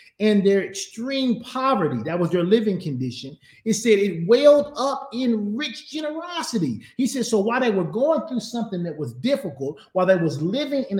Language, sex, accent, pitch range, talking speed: English, male, American, 185-240 Hz, 185 wpm